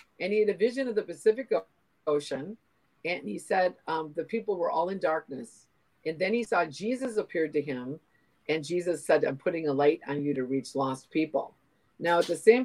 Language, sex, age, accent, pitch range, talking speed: English, female, 50-69, American, 145-215 Hz, 210 wpm